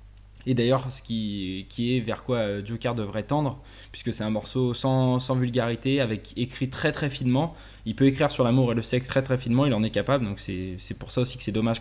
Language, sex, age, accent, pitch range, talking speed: French, male, 20-39, French, 105-130 Hz, 230 wpm